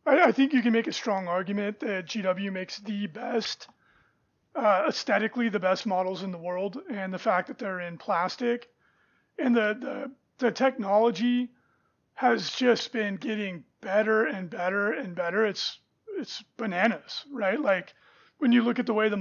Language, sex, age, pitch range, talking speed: English, male, 30-49, 185-235 Hz, 170 wpm